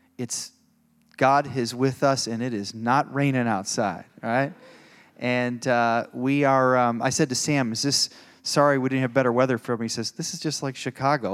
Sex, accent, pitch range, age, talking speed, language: male, American, 115-140 Hz, 30-49, 200 wpm, English